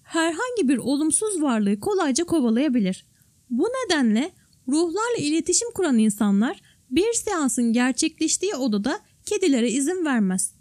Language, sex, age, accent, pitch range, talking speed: Turkish, female, 10-29, native, 250-370 Hz, 105 wpm